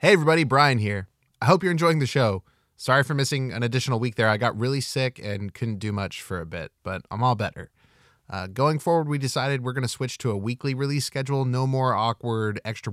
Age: 20-39